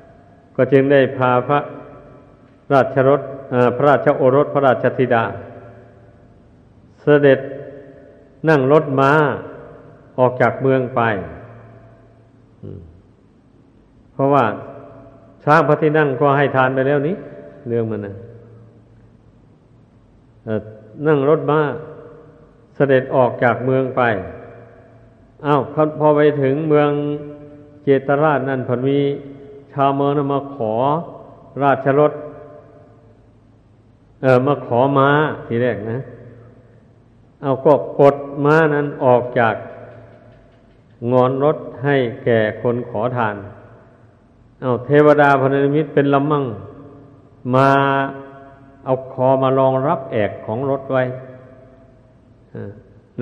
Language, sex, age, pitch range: Thai, male, 60-79, 120-140 Hz